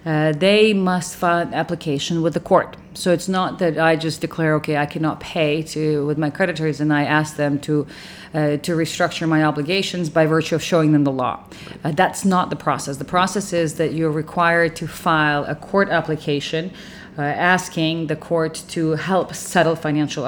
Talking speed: 190 wpm